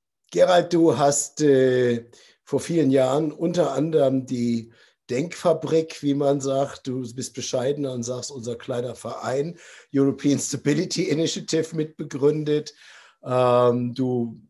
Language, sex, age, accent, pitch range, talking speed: German, male, 60-79, German, 125-155 Hz, 110 wpm